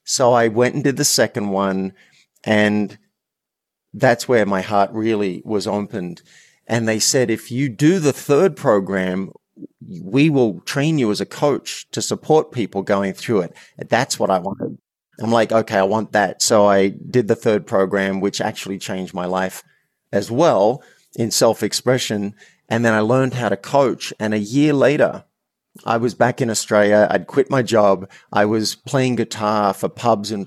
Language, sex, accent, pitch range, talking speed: English, male, Australian, 100-120 Hz, 175 wpm